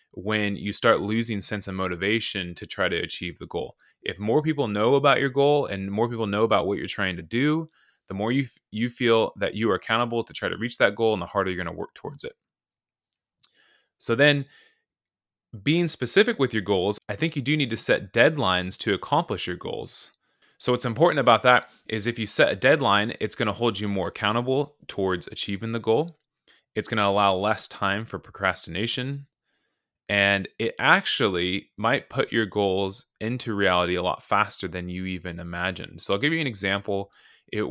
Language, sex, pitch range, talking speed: English, male, 95-120 Hz, 195 wpm